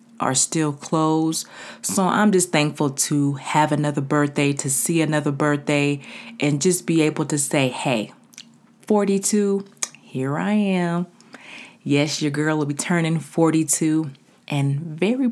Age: 30-49